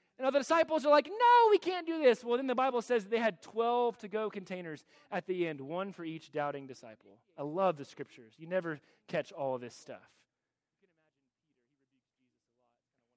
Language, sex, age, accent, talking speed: English, male, 30-49, American, 185 wpm